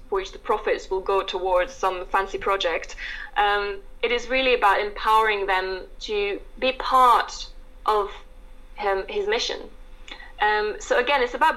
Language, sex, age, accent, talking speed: English, female, 20-39, British, 145 wpm